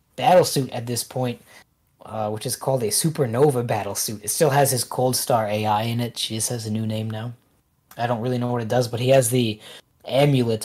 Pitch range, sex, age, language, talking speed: 115-145 Hz, male, 20-39, English, 230 wpm